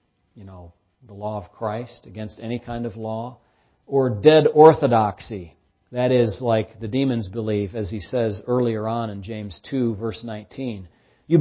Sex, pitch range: male, 105-140 Hz